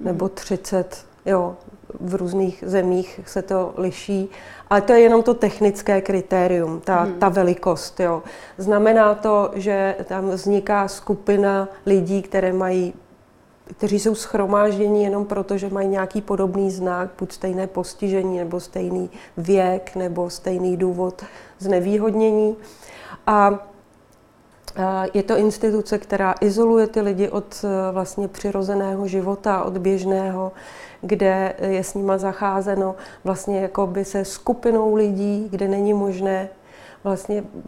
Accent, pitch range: native, 190-205 Hz